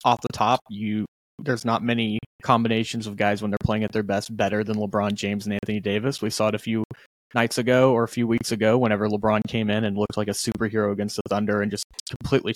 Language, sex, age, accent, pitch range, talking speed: English, male, 20-39, American, 105-120 Hz, 240 wpm